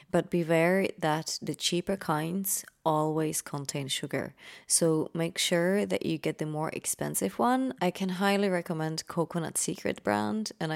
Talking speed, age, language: 150 wpm, 20-39, English